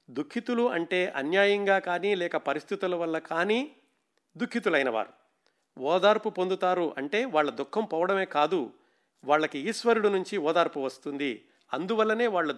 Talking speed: 110 wpm